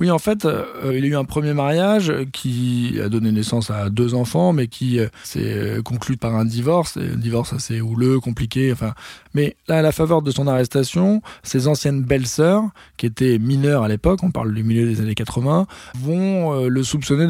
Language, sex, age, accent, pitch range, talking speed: French, male, 20-39, French, 115-145 Hz, 210 wpm